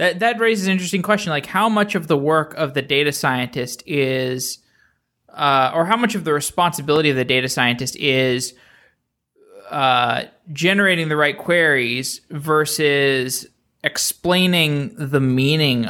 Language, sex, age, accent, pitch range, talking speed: English, male, 20-39, American, 130-170 Hz, 145 wpm